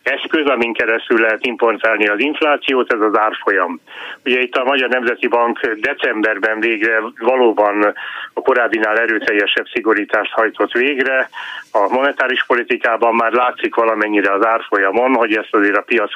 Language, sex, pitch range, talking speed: Hungarian, male, 110-135 Hz, 140 wpm